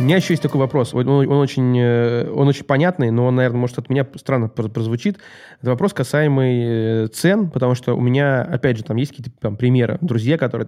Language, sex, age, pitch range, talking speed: Russian, male, 20-39, 115-150 Hz, 200 wpm